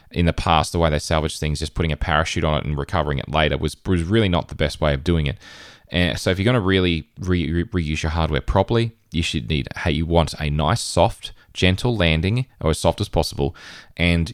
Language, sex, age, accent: English, male, 20-39, Australian